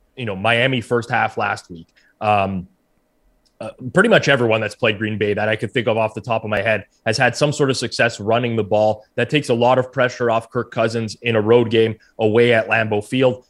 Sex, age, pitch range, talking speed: male, 20-39, 110-125 Hz, 235 wpm